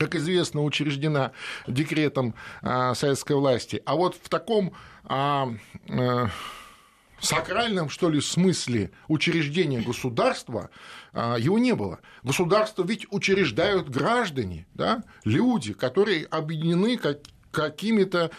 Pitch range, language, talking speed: 135-195 Hz, Russian, 90 wpm